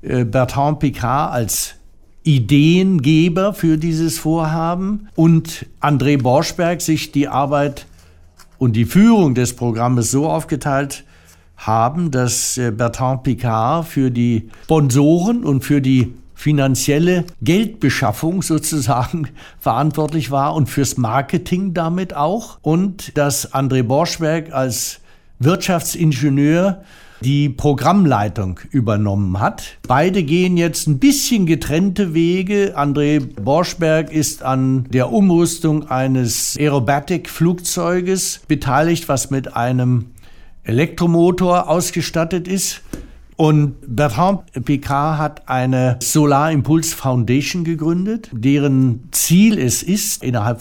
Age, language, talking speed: 60-79, German, 100 wpm